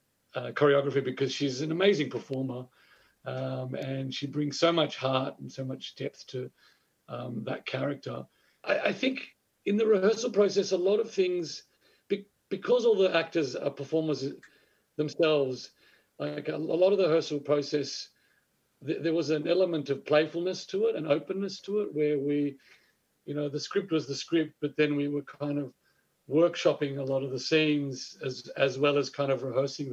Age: 50-69